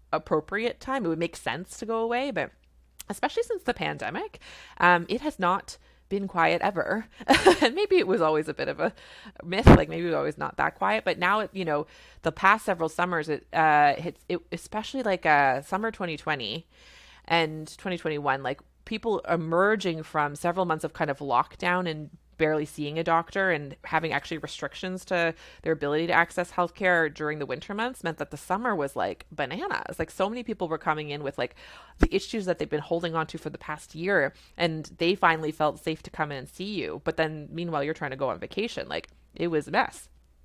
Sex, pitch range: female, 155-190 Hz